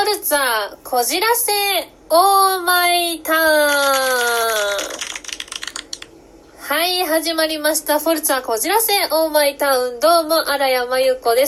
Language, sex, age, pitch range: Japanese, female, 20-39, 260-370 Hz